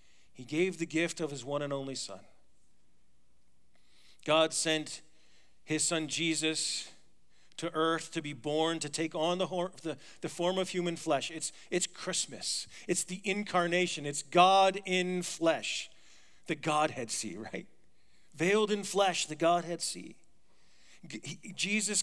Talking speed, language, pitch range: 135 wpm, English, 155-190 Hz